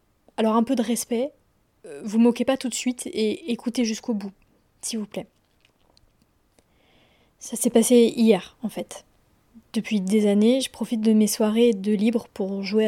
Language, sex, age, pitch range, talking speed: French, female, 20-39, 205-240 Hz, 170 wpm